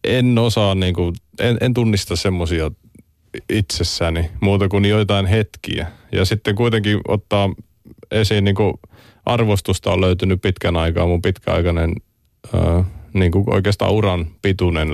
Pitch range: 80-100 Hz